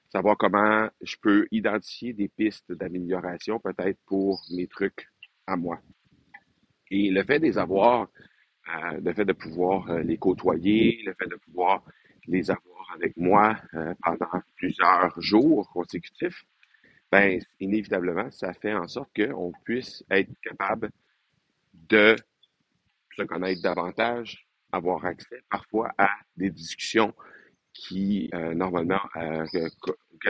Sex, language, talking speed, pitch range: male, French, 125 wpm, 85-100 Hz